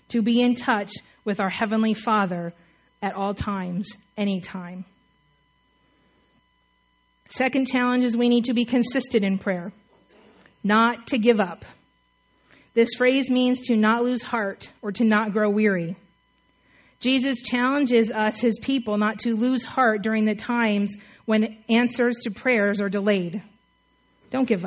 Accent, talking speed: American, 140 wpm